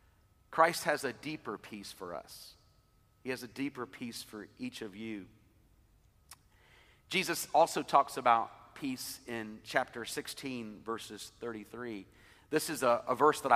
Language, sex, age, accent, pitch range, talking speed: English, male, 40-59, American, 105-135 Hz, 140 wpm